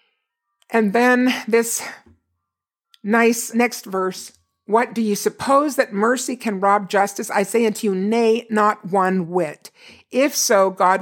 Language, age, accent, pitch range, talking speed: English, 50-69, American, 195-245 Hz, 140 wpm